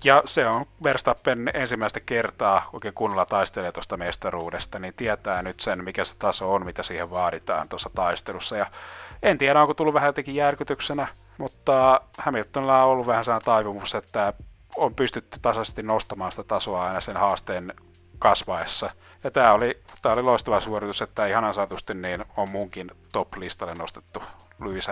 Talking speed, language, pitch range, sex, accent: 155 wpm, Finnish, 100-130 Hz, male, native